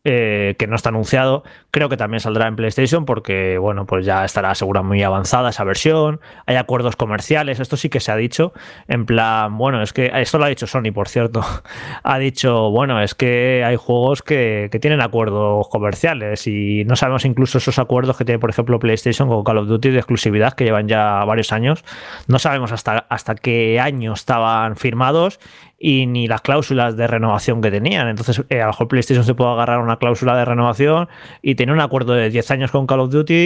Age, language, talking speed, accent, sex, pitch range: 20-39, Spanish, 210 wpm, Spanish, male, 110-135 Hz